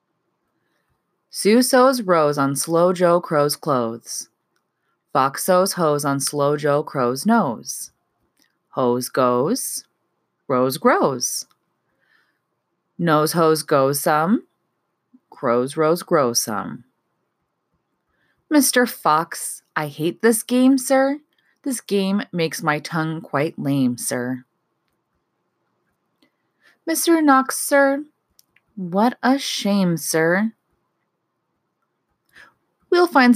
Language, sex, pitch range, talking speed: English, female, 150-235 Hz, 90 wpm